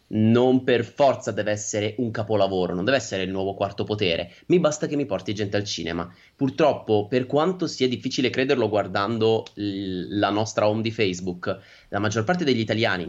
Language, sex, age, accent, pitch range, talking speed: Italian, male, 20-39, native, 100-125 Hz, 180 wpm